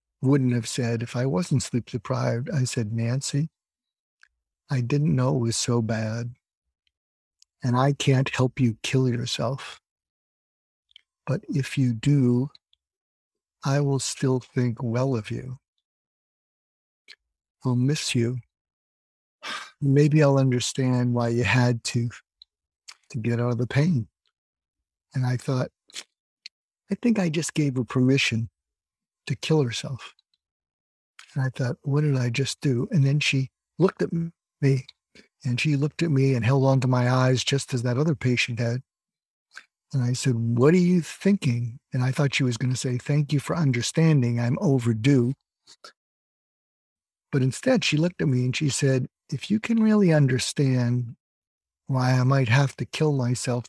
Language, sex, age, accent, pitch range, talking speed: English, male, 50-69, American, 120-140 Hz, 155 wpm